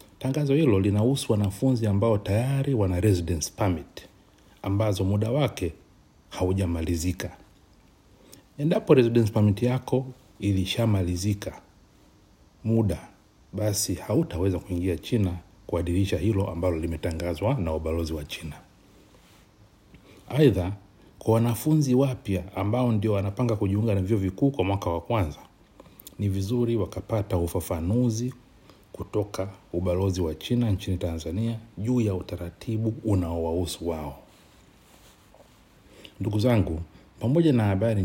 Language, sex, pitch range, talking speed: Swahili, male, 85-110 Hz, 100 wpm